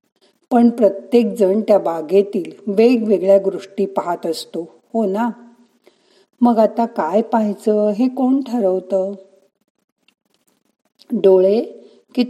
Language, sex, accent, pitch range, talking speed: Marathi, female, native, 195-245 Hz, 100 wpm